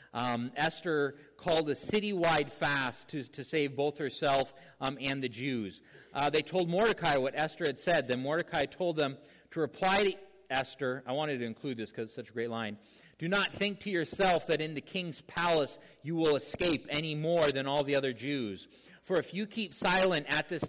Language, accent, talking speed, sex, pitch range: English, American, 200 wpm, male, 135-175 Hz